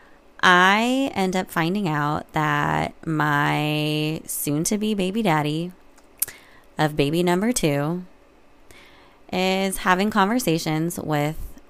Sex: female